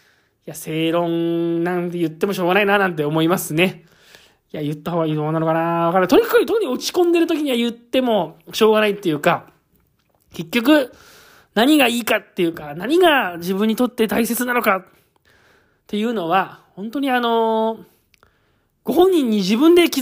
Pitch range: 185-265 Hz